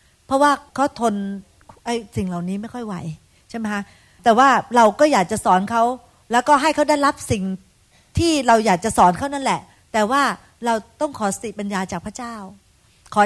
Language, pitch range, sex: Thai, 195-255 Hz, female